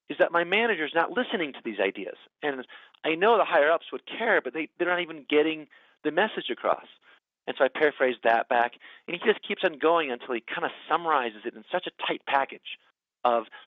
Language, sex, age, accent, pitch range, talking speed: English, male, 40-59, American, 135-185 Hz, 215 wpm